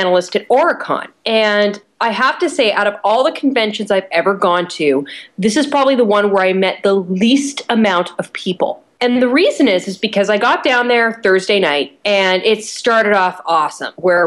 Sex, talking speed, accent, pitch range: female, 200 wpm, American, 175-235 Hz